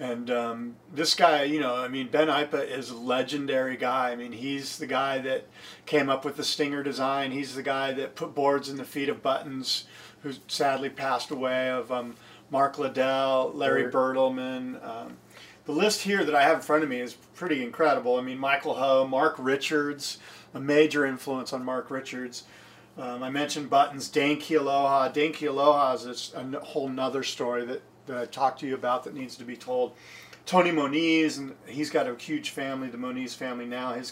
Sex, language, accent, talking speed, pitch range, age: male, English, American, 195 wpm, 130-155 Hz, 40-59